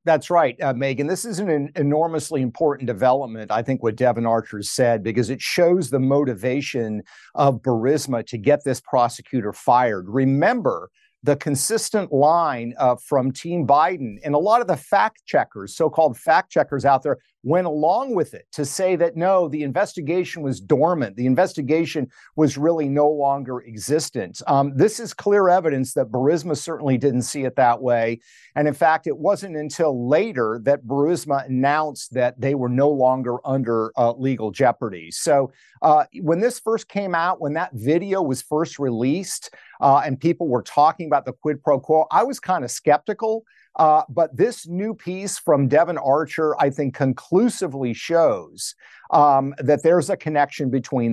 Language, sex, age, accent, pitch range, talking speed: English, male, 50-69, American, 130-165 Hz, 170 wpm